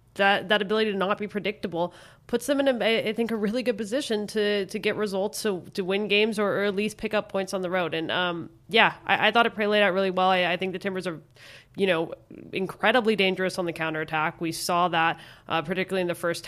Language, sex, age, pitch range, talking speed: English, female, 20-39, 175-210 Hz, 245 wpm